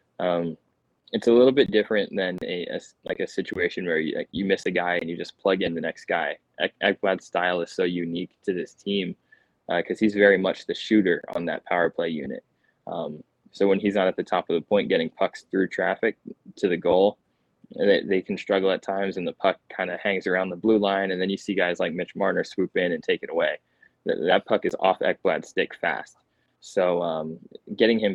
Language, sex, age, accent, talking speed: English, male, 20-39, American, 220 wpm